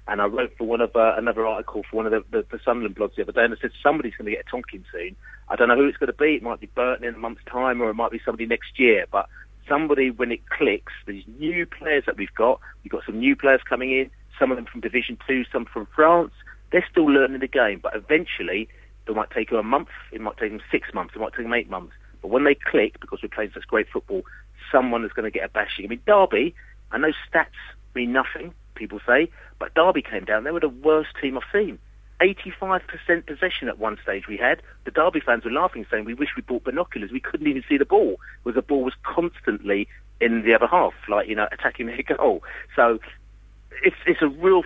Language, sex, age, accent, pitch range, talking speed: English, male, 40-59, British, 115-165 Hz, 250 wpm